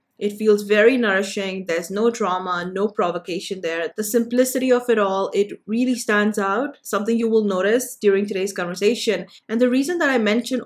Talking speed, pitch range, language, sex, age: 180 wpm, 200-235 Hz, English, female, 20-39